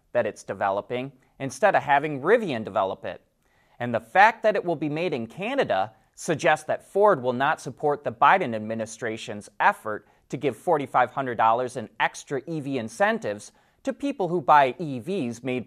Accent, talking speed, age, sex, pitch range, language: American, 160 wpm, 30-49, male, 125-180 Hz, English